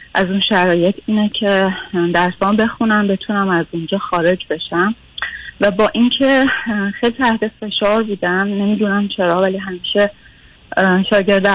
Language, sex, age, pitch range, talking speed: Persian, female, 30-49, 190-220 Hz, 125 wpm